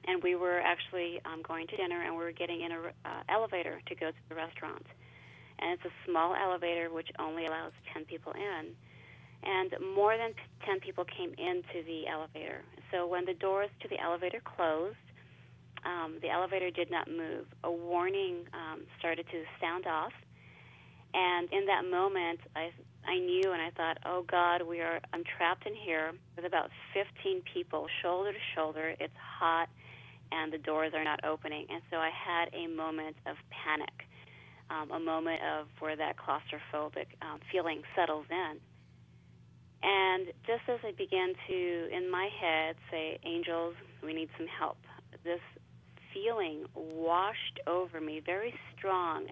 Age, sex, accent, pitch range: 30-49, female, American, 155-180 Hz